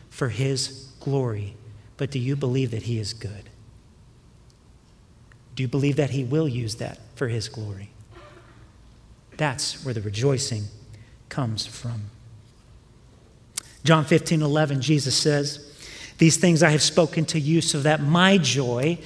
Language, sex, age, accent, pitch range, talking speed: English, male, 40-59, American, 120-160 Hz, 140 wpm